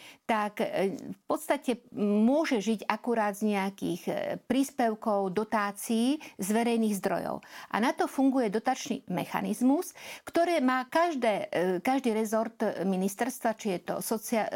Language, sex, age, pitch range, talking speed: Slovak, female, 50-69, 200-255 Hz, 120 wpm